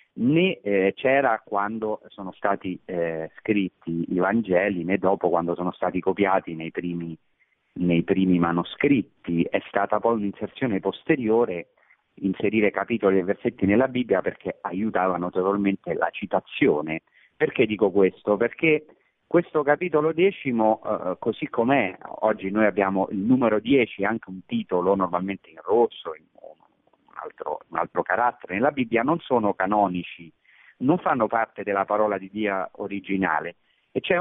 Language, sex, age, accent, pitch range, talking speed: Italian, male, 40-59, native, 95-145 Hz, 135 wpm